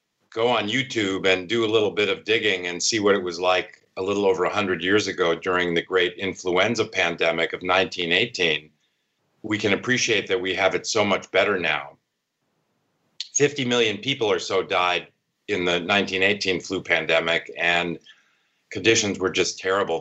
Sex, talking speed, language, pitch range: male, 170 wpm, English, 85-110 Hz